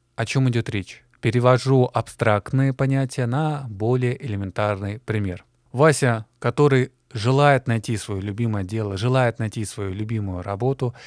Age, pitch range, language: 20-39, 110-135 Hz, Russian